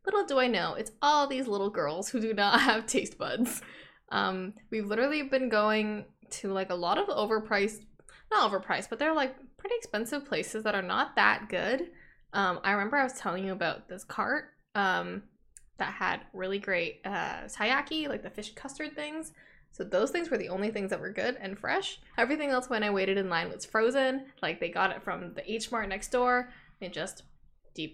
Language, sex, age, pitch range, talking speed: English, female, 10-29, 195-265 Hz, 205 wpm